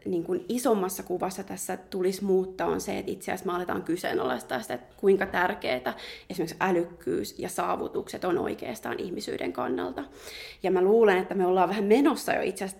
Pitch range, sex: 180-210 Hz, female